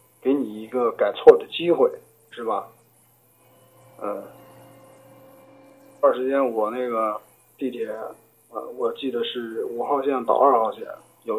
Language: Chinese